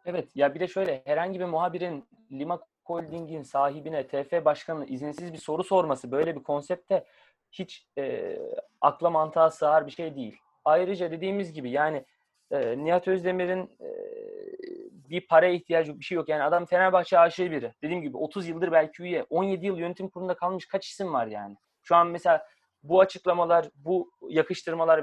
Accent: native